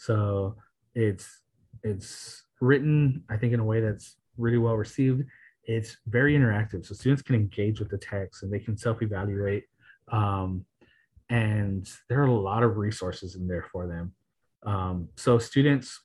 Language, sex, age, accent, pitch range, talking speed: English, male, 30-49, American, 100-120 Hz, 155 wpm